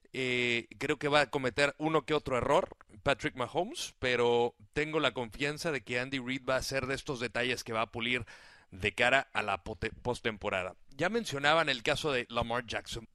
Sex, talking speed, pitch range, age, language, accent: male, 190 wpm, 125-175 Hz, 40-59, Spanish, Mexican